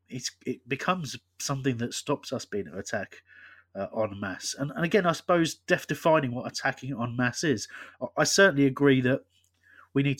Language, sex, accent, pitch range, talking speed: English, male, British, 110-140 Hz, 180 wpm